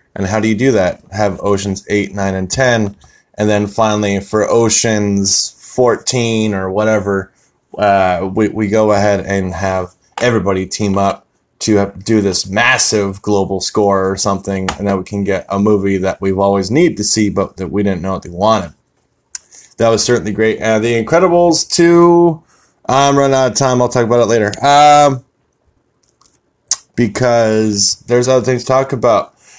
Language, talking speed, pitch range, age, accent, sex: English, 175 wpm, 100-150 Hz, 20-39, American, male